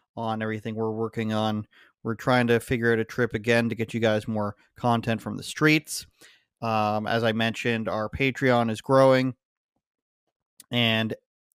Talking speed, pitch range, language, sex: 160 wpm, 115-135 Hz, English, male